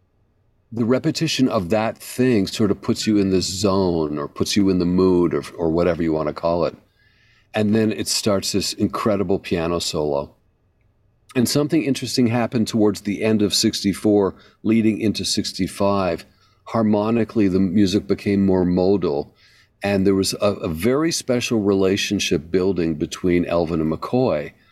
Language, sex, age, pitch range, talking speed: English, male, 50-69, 95-115 Hz, 160 wpm